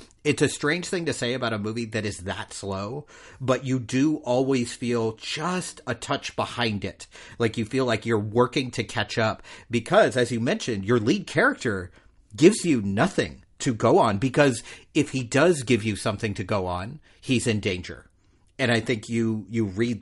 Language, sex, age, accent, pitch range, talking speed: English, male, 40-59, American, 105-130 Hz, 190 wpm